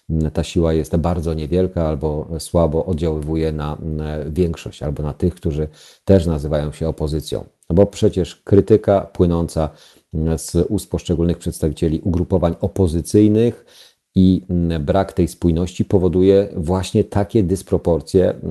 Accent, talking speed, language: native, 115 wpm, Polish